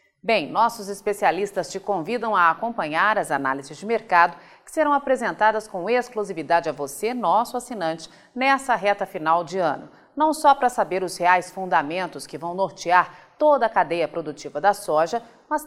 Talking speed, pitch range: 160 wpm, 180-250 Hz